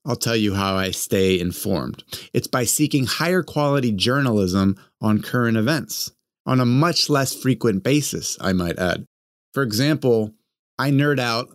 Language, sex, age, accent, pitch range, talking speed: English, male, 30-49, American, 105-135 Hz, 155 wpm